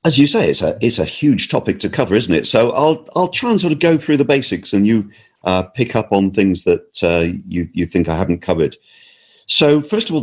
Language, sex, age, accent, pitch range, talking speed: English, male, 50-69, British, 85-135 Hz, 250 wpm